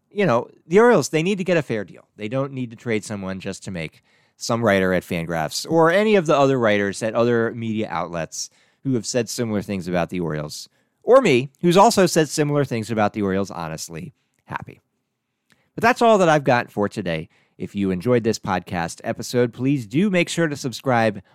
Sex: male